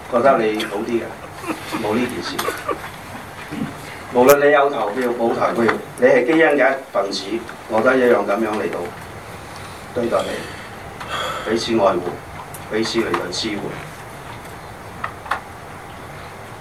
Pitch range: 110-130 Hz